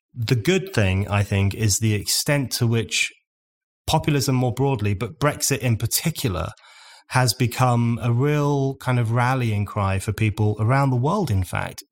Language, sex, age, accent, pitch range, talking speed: English, male, 30-49, British, 105-120 Hz, 160 wpm